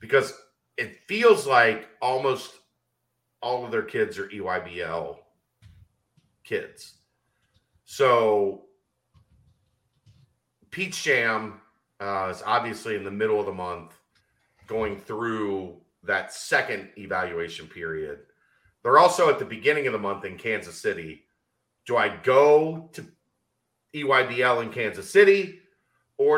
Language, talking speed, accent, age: English, 115 wpm, American, 40-59